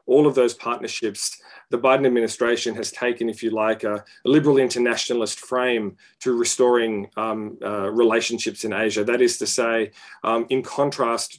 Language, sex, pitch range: English, male, 115-140 Hz